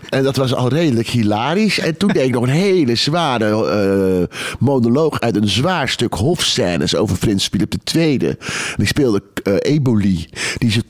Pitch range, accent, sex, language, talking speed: 110-170 Hz, Dutch, male, Dutch, 175 wpm